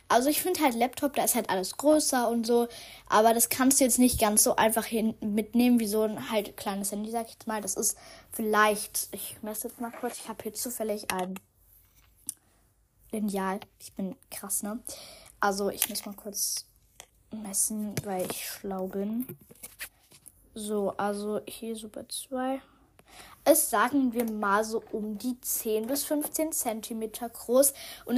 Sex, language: female, German